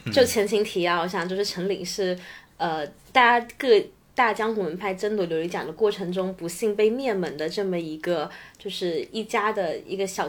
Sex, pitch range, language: female, 180-225 Hz, Chinese